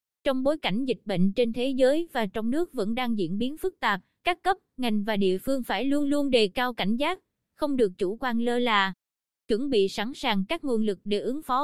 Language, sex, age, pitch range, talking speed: Vietnamese, female, 20-39, 205-265 Hz, 235 wpm